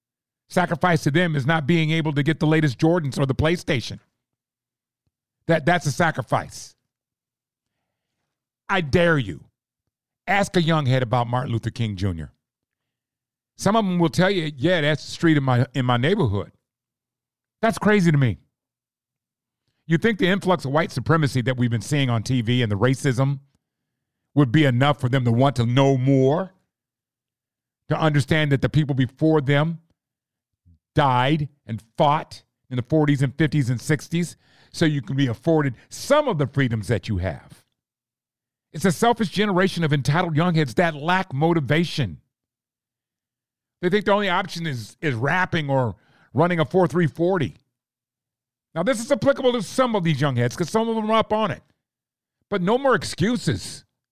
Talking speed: 165 wpm